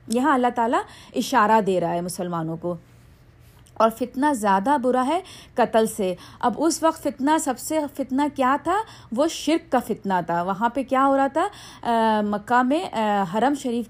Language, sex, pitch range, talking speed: Urdu, female, 210-275 Hz, 175 wpm